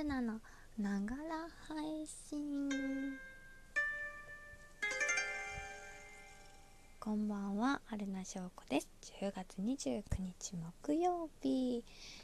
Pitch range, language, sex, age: 190-270 Hz, Japanese, female, 20-39